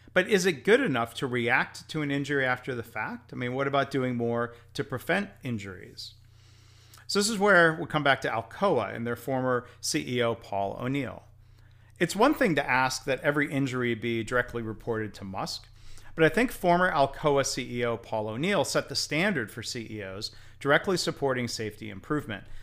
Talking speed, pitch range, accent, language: 180 wpm, 110-140 Hz, American, English